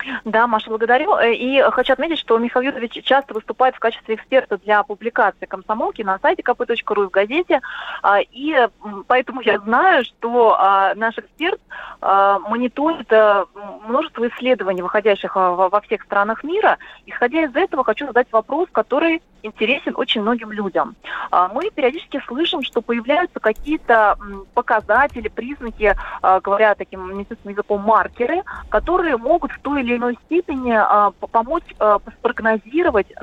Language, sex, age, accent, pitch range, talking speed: Russian, female, 20-39, native, 205-265 Hz, 125 wpm